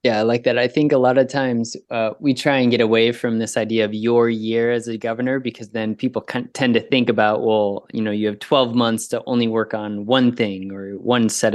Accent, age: American, 20-39